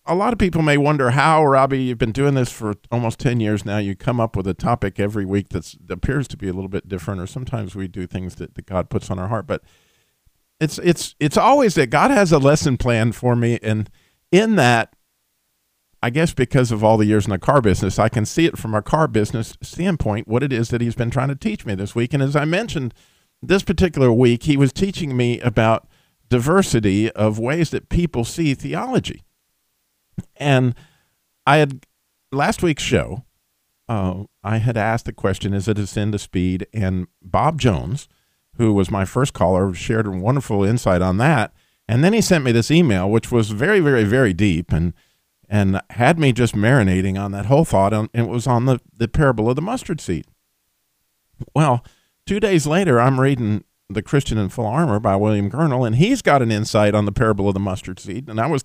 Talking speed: 210 wpm